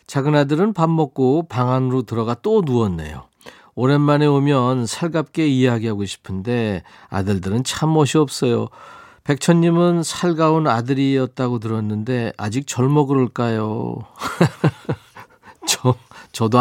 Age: 40-59